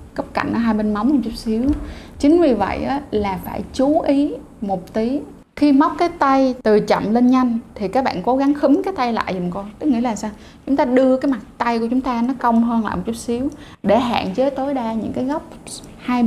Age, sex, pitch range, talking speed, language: 20-39, female, 220-275 Hz, 245 wpm, Vietnamese